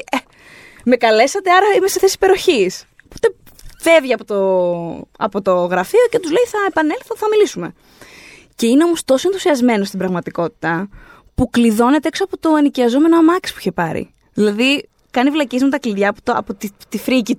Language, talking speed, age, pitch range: Greek, 175 wpm, 20-39, 200-335 Hz